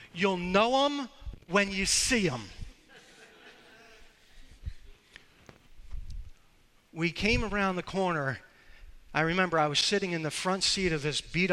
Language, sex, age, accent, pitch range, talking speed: English, male, 40-59, American, 135-200 Hz, 125 wpm